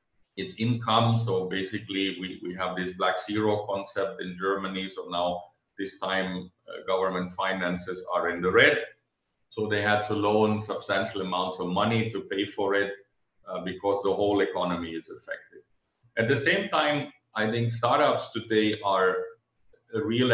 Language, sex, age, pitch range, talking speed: English, male, 50-69, 95-115 Hz, 160 wpm